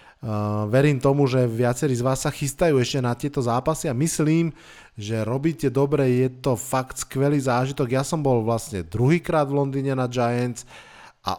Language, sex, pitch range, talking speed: Slovak, male, 120-140 Hz, 170 wpm